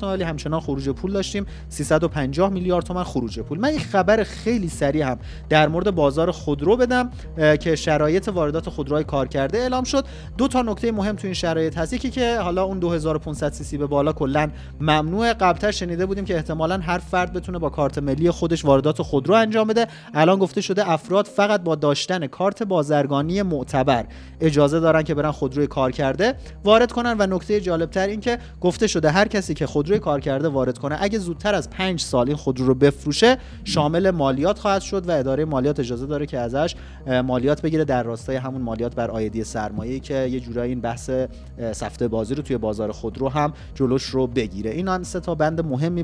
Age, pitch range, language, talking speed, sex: 30-49, 135-185 Hz, Persian, 190 wpm, male